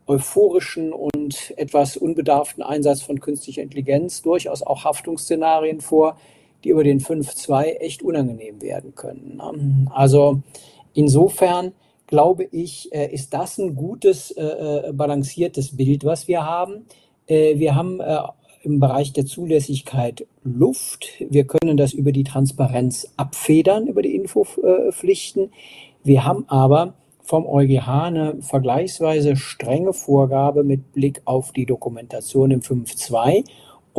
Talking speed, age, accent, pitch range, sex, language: 120 wpm, 50-69, German, 135-165 Hz, male, German